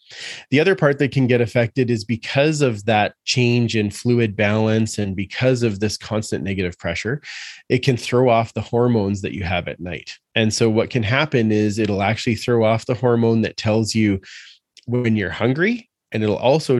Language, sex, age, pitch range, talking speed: English, male, 20-39, 105-125 Hz, 195 wpm